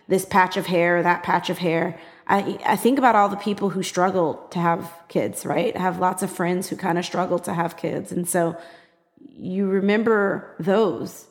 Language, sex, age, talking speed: English, female, 20-39, 200 wpm